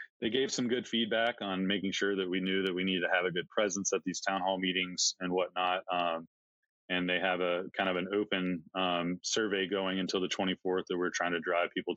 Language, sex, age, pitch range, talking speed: English, male, 20-39, 90-95 Hz, 235 wpm